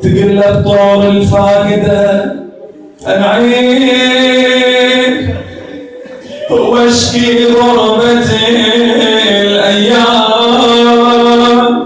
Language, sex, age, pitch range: Arabic, male, 30-49, 205-240 Hz